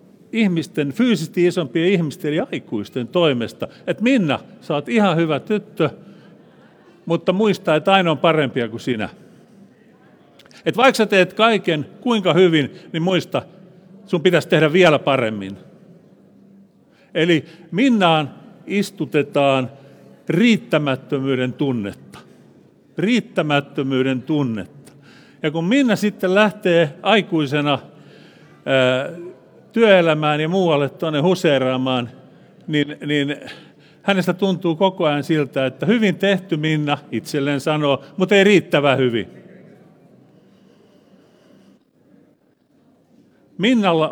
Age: 50-69